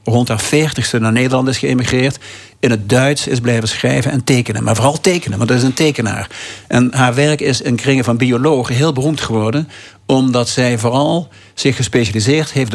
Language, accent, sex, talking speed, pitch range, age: Dutch, Dutch, male, 190 wpm, 115-145 Hz, 60-79